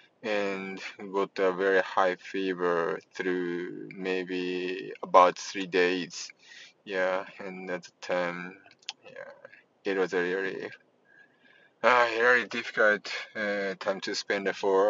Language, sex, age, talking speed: English, male, 20-39, 120 wpm